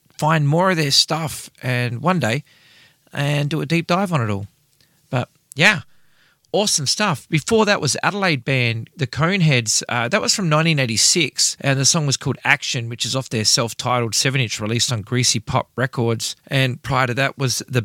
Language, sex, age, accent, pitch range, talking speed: English, male, 30-49, Australian, 125-160 Hz, 185 wpm